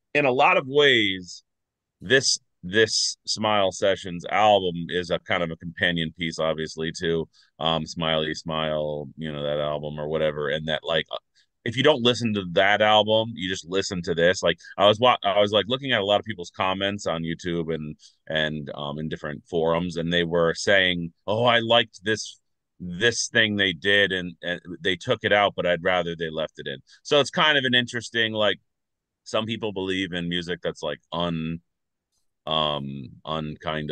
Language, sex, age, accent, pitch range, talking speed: English, male, 30-49, American, 80-100 Hz, 190 wpm